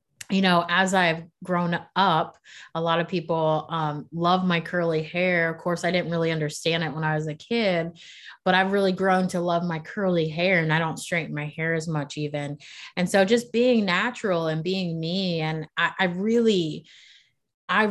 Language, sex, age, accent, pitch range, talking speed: English, female, 20-39, American, 160-195 Hz, 195 wpm